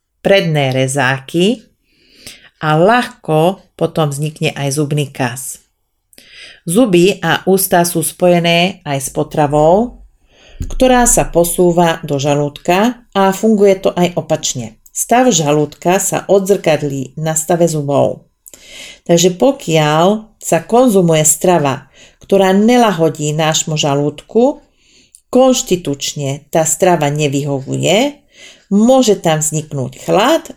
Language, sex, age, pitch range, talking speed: Slovak, female, 40-59, 150-195 Hz, 100 wpm